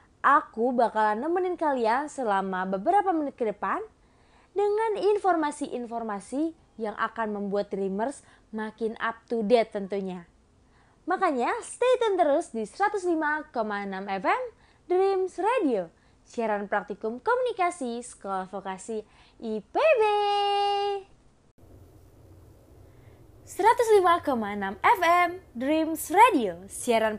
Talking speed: 90 wpm